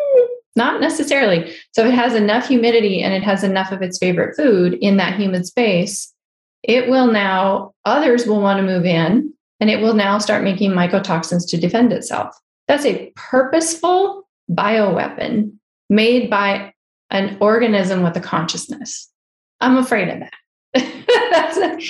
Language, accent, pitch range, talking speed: English, American, 185-235 Hz, 150 wpm